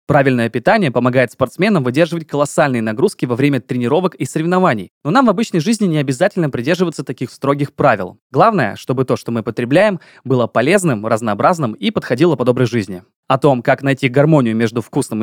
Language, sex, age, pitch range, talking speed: Russian, male, 20-39, 125-170 Hz, 175 wpm